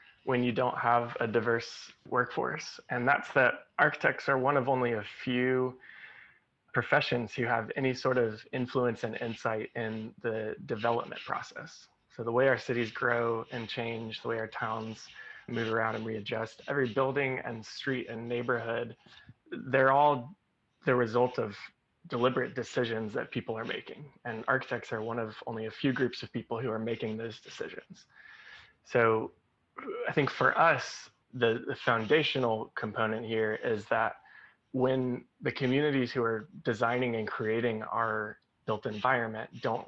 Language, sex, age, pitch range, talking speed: English, male, 20-39, 110-130 Hz, 155 wpm